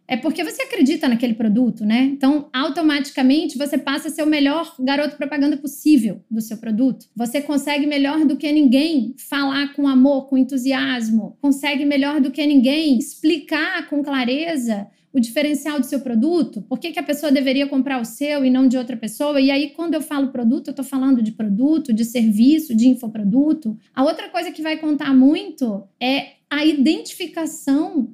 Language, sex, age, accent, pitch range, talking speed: Portuguese, female, 20-39, Brazilian, 255-300 Hz, 175 wpm